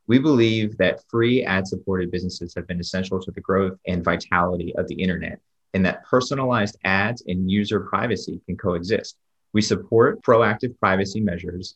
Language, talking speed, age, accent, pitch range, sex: English, 160 wpm, 30-49, American, 90-100 Hz, male